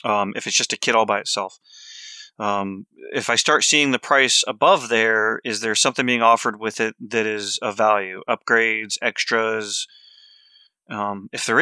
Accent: American